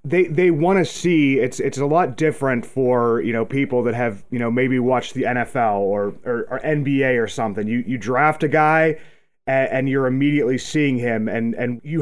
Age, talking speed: 30-49, 210 wpm